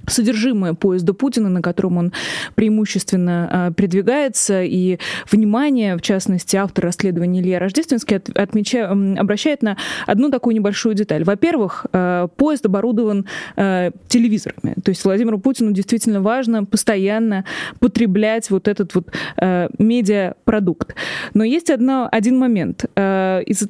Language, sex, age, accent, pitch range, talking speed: Russian, female, 20-39, native, 190-240 Hz, 120 wpm